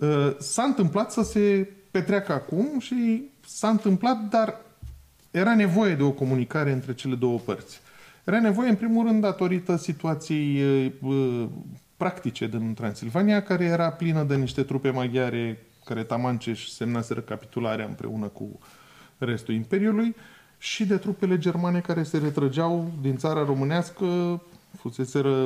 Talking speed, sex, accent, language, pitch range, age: 130 wpm, male, native, Romanian, 130-200 Hz, 30-49